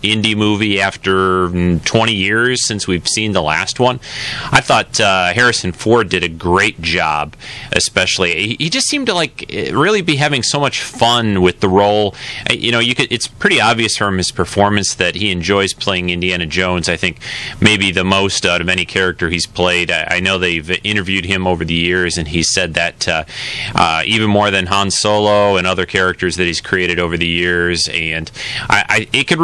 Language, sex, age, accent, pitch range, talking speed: English, male, 30-49, American, 90-120 Hz, 200 wpm